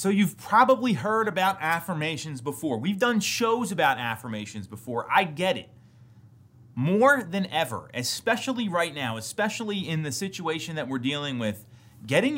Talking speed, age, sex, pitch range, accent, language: 150 wpm, 30-49, male, 120-190 Hz, American, English